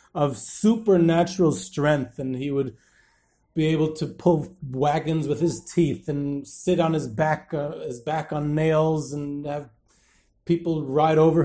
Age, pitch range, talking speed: 30-49, 140-165 Hz, 150 wpm